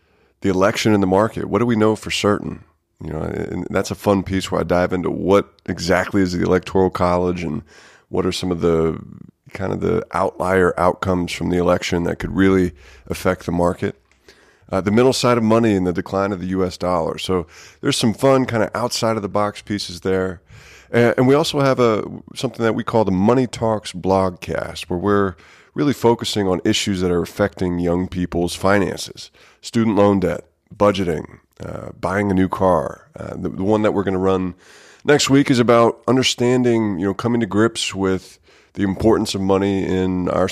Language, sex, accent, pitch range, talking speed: English, male, American, 90-110 Hz, 200 wpm